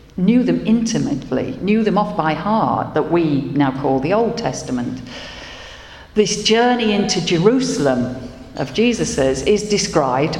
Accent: British